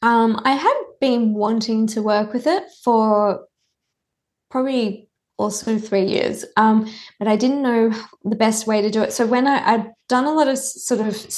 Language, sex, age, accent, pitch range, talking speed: English, female, 20-39, Australian, 205-240 Hz, 185 wpm